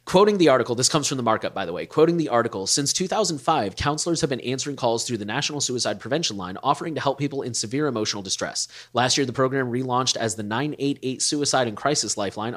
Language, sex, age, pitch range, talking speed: English, male, 20-39, 115-150 Hz, 225 wpm